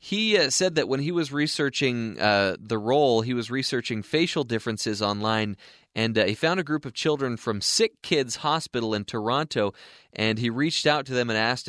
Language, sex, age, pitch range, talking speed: English, male, 30-49, 110-140 Hz, 195 wpm